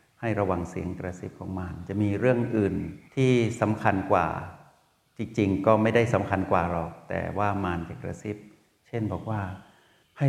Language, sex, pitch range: Thai, male, 100-115 Hz